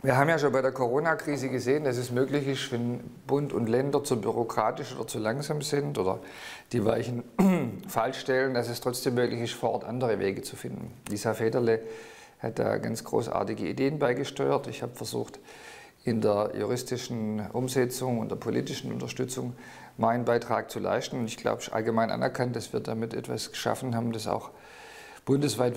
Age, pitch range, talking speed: 50-69, 115-130 Hz, 175 wpm